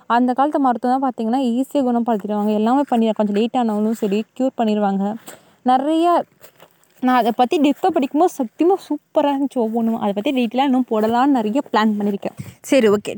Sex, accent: female, native